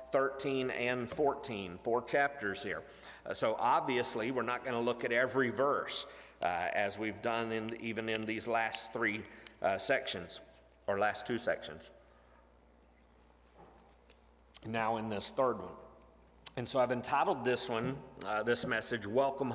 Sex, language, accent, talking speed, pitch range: male, English, American, 145 wpm, 125-175 Hz